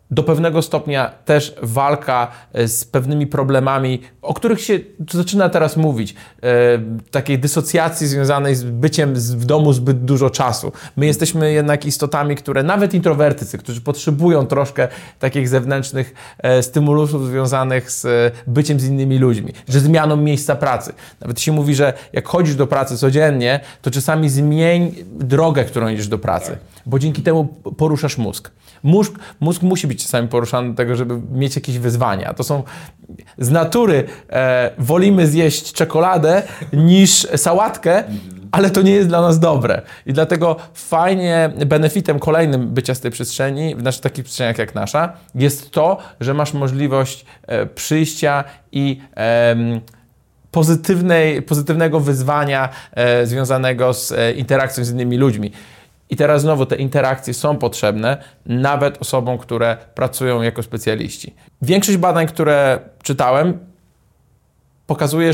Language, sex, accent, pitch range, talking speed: Polish, male, native, 125-155 Hz, 130 wpm